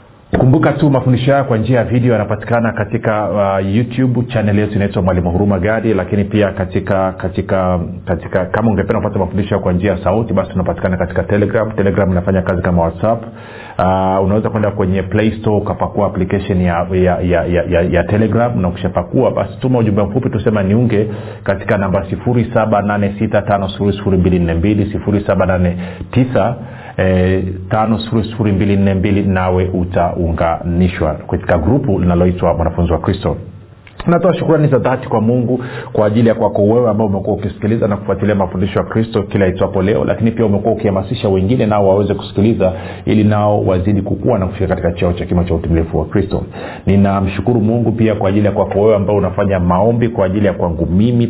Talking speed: 170 wpm